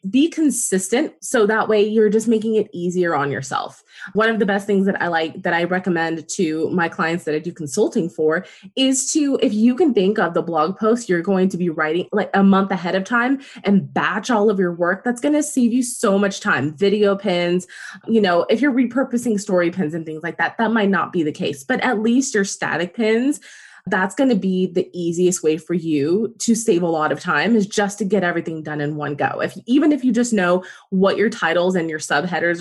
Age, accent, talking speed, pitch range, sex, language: 20-39, American, 235 wpm, 175-220 Hz, female, English